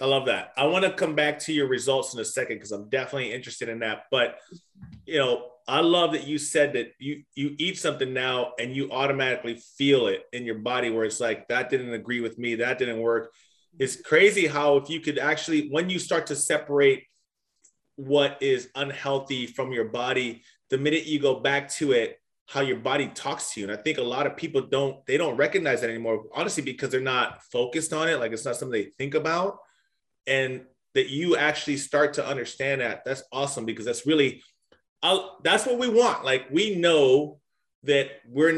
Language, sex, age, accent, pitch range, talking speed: English, male, 30-49, American, 130-165 Hz, 210 wpm